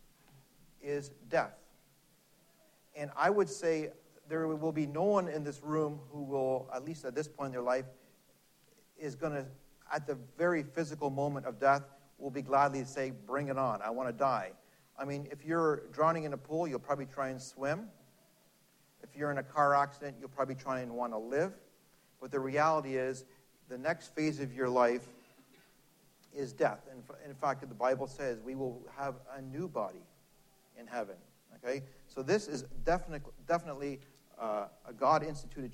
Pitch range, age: 130-155 Hz, 50-69